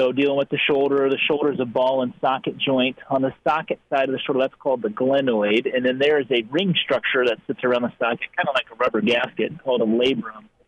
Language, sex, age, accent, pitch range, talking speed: English, male, 30-49, American, 115-140 Hz, 245 wpm